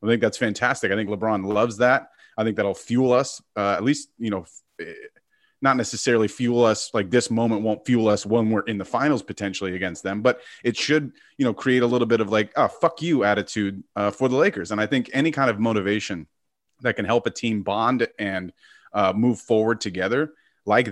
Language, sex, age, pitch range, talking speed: English, male, 30-49, 105-130 Hz, 215 wpm